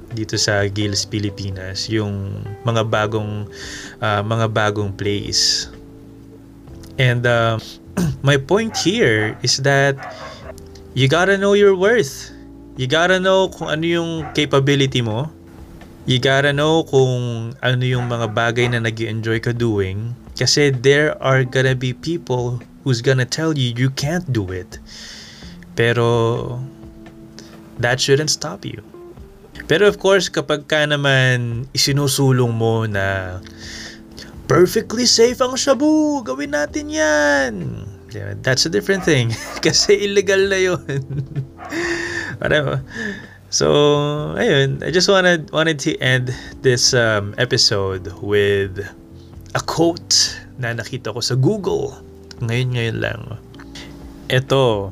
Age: 20-39